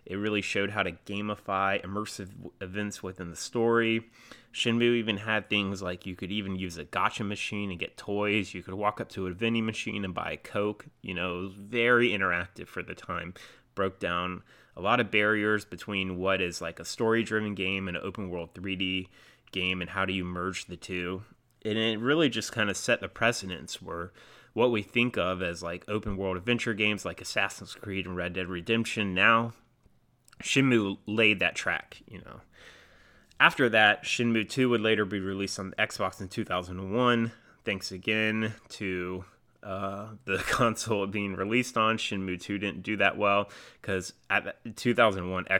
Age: 30-49